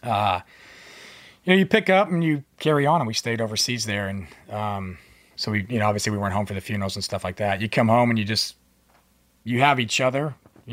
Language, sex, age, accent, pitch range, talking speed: English, male, 30-49, American, 100-120 Hz, 240 wpm